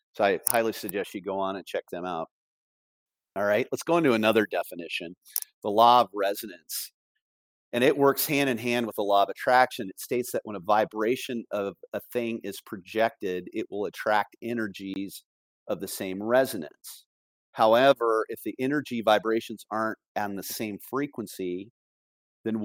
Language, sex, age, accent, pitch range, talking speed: English, male, 40-59, American, 100-120 Hz, 165 wpm